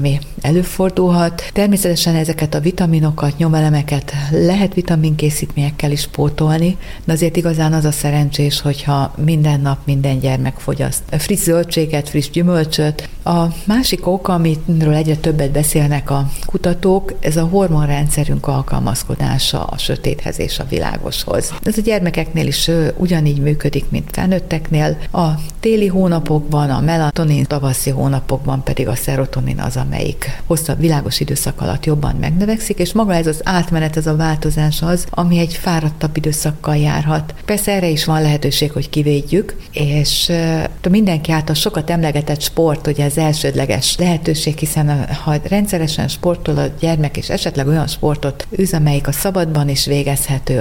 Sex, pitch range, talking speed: female, 145-170 Hz, 140 wpm